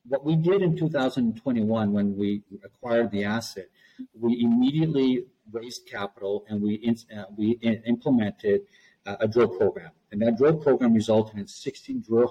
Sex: male